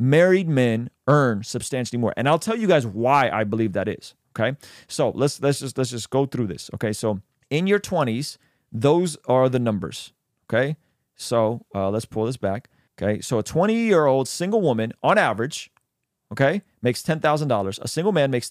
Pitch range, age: 110-155 Hz, 30-49